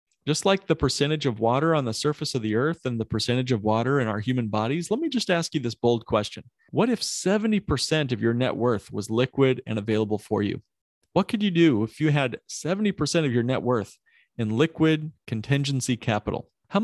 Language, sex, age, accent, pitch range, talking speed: English, male, 40-59, American, 115-155 Hz, 210 wpm